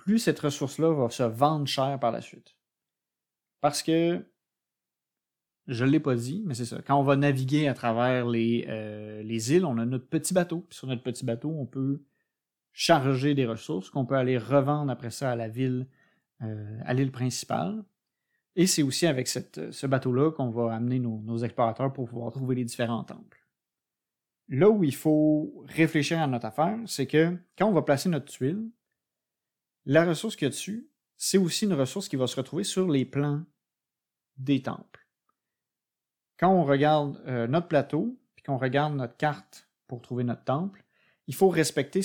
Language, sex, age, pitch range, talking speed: French, male, 30-49, 130-170 Hz, 185 wpm